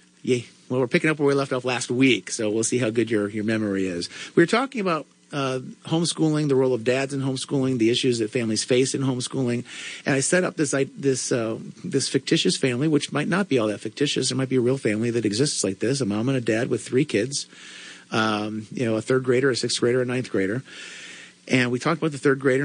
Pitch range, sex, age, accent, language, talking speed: 110-140 Hz, male, 50-69, American, English, 250 wpm